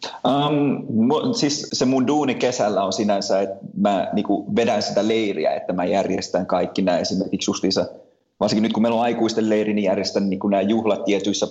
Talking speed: 175 wpm